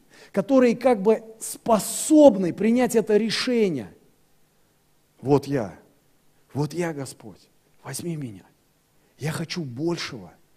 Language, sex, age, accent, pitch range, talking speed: Russian, male, 40-59, native, 150-195 Hz, 95 wpm